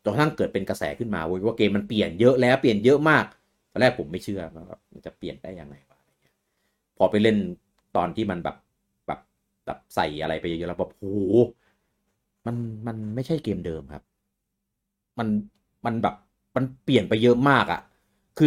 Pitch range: 100-125 Hz